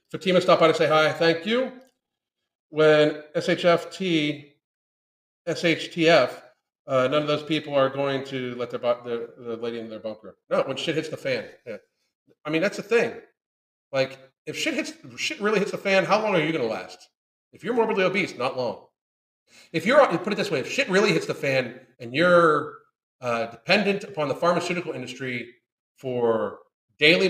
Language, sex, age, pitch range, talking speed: English, male, 40-59, 130-185 Hz, 185 wpm